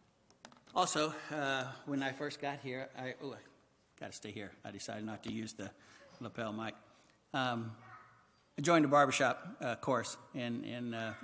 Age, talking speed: 60-79, 170 wpm